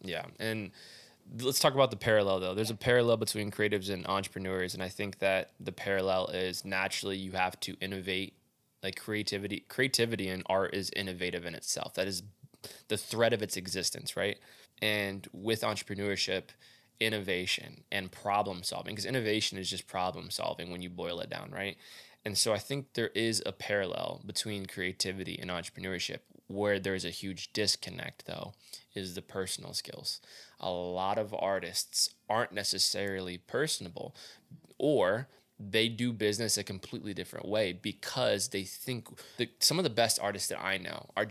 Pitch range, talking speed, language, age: 95-110 Hz, 165 wpm, English, 20-39